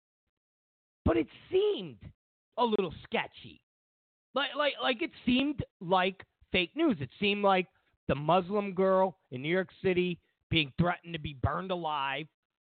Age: 40-59